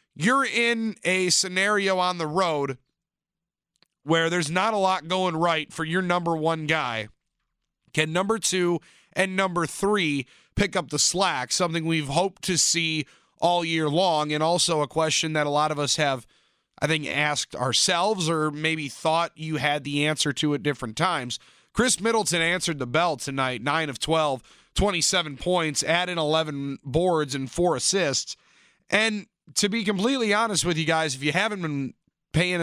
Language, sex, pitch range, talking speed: English, male, 150-190 Hz, 170 wpm